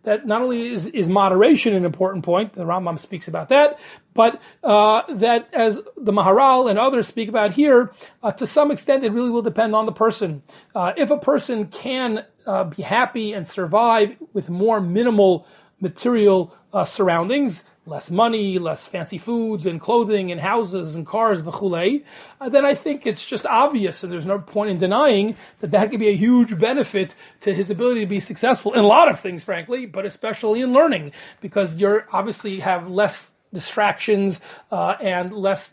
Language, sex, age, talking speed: English, male, 30-49, 185 wpm